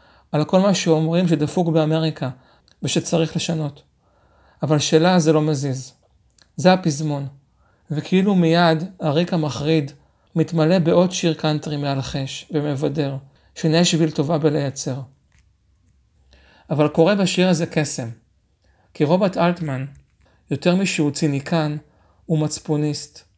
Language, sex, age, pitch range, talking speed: Hebrew, male, 40-59, 140-170 Hz, 110 wpm